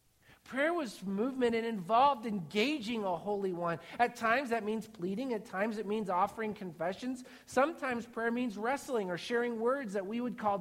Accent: American